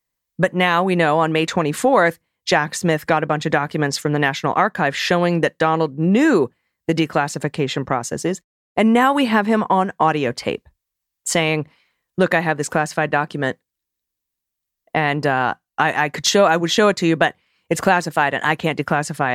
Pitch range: 150-190 Hz